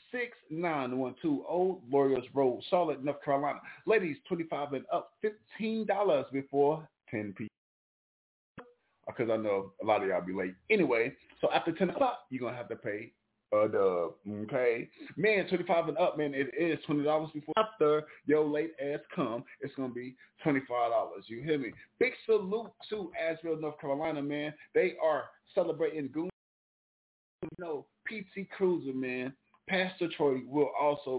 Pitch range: 130-180 Hz